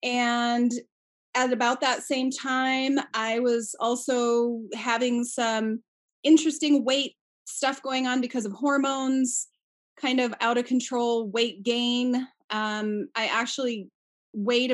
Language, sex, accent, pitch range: English, female, American, 225-275 Hz